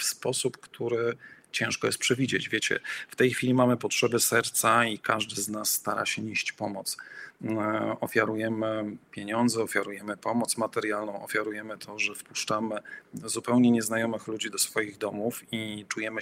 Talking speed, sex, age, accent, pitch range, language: 140 wpm, male, 40-59, native, 105-115 Hz, Polish